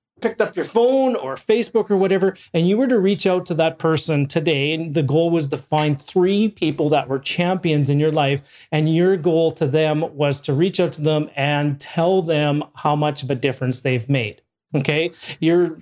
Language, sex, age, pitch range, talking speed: English, male, 30-49, 145-175 Hz, 210 wpm